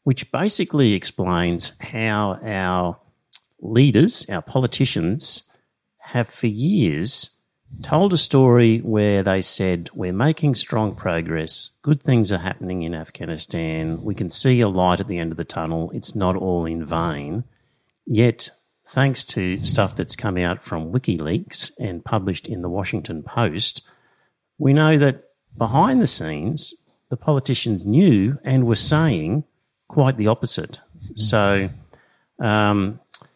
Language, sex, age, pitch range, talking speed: English, male, 50-69, 90-125 Hz, 135 wpm